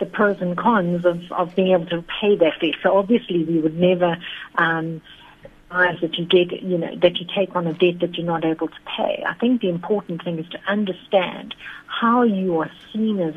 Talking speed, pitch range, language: 220 wpm, 165-195 Hz, English